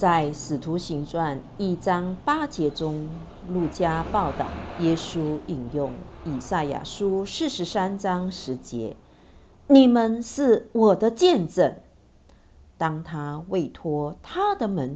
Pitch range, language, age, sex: 145-235 Hz, Chinese, 50-69, female